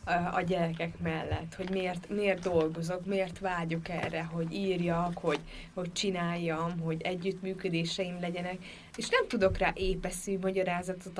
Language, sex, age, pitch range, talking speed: Hungarian, female, 20-39, 175-195 Hz, 130 wpm